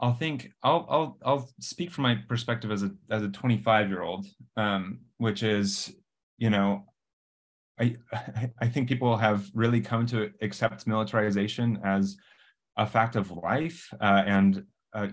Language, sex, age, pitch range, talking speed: English, male, 30-49, 100-115 Hz, 150 wpm